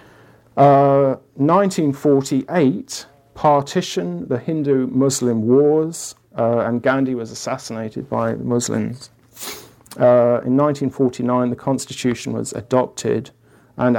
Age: 40-59